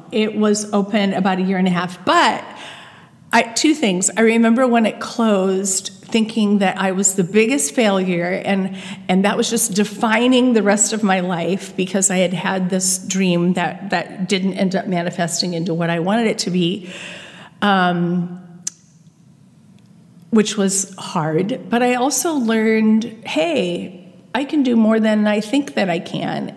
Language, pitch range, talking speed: English, 185-220 Hz, 165 wpm